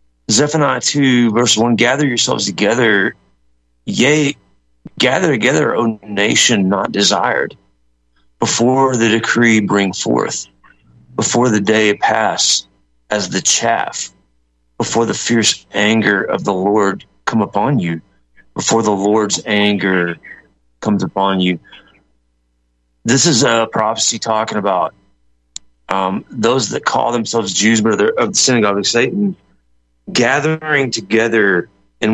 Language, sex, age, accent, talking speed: English, male, 30-49, American, 125 wpm